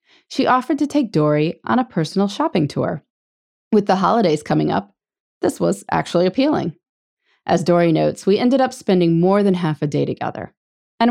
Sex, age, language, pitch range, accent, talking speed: female, 20-39, English, 160-235 Hz, American, 180 wpm